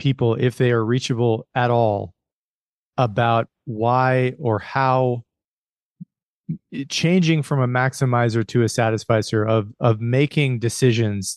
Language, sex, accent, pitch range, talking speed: English, male, American, 110-130 Hz, 115 wpm